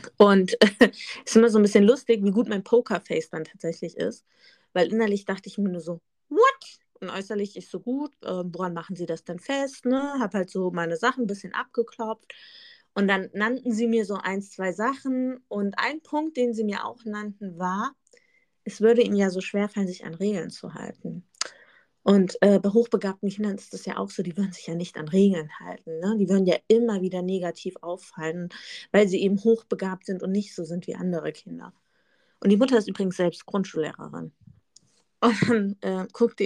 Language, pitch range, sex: German, 185-235 Hz, female